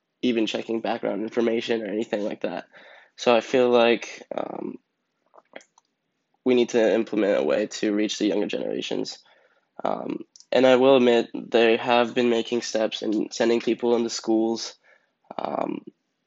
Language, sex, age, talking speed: English, male, 10-29, 150 wpm